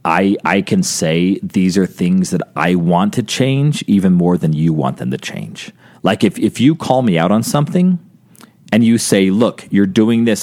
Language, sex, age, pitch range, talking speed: English, male, 40-59, 90-115 Hz, 205 wpm